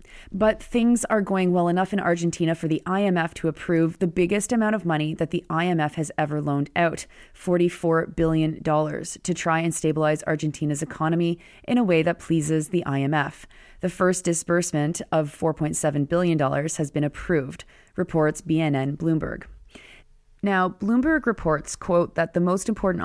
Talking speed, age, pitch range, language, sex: 155 wpm, 30-49, 150-175 Hz, English, female